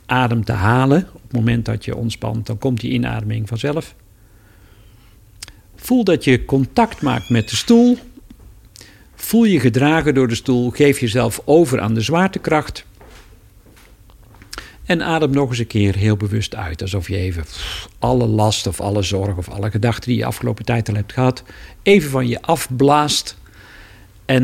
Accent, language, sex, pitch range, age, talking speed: Dutch, Dutch, male, 105-140 Hz, 50-69, 160 wpm